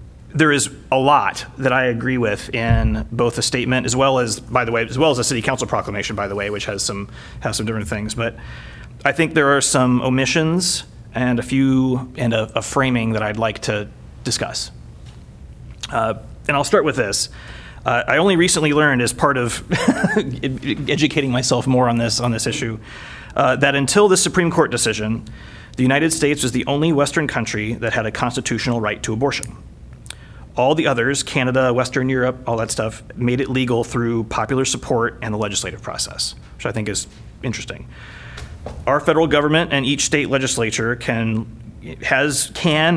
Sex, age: male, 30-49